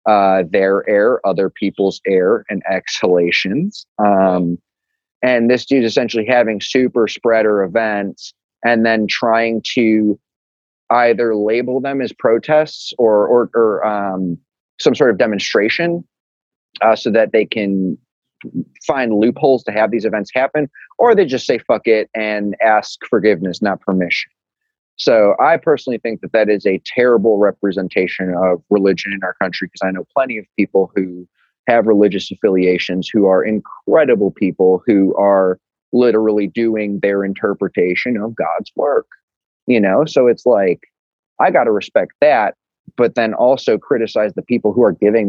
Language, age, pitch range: English, 30-49, 95-120 Hz